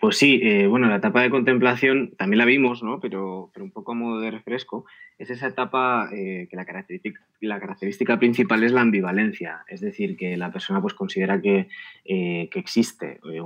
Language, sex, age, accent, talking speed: Spanish, male, 20-39, Spanish, 200 wpm